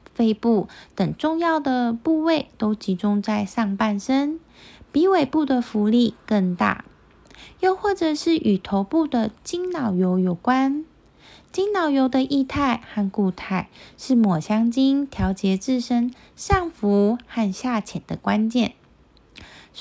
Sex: female